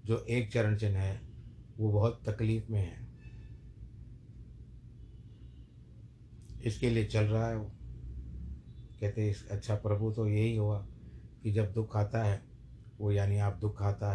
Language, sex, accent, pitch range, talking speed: Hindi, male, native, 105-115 Hz, 135 wpm